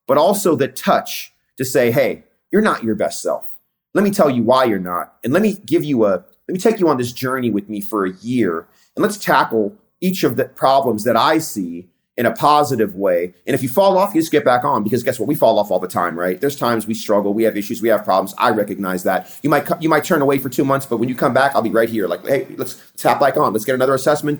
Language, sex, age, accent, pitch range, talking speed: English, male, 30-49, American, 115-160 Hz, 275 wpm